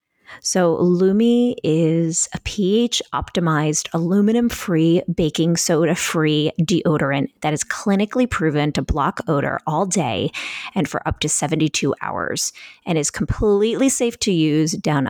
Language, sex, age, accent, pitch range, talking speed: English, female, 30-49, American, 155-210 Hz, 125 wpm